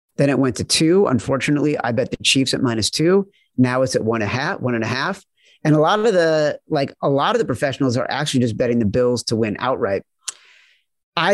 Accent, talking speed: American, 240 wpm